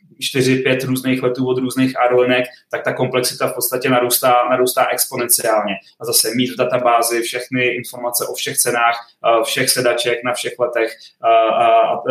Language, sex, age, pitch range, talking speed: Czech, male, 20-39, 120-130 Hz, 155 wpm